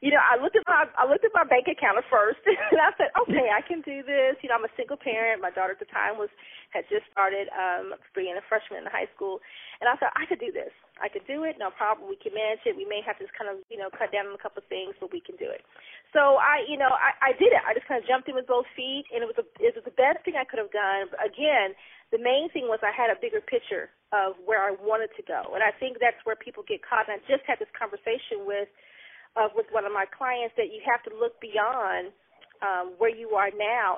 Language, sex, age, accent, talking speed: English, female, 30-49, American, 285 wpm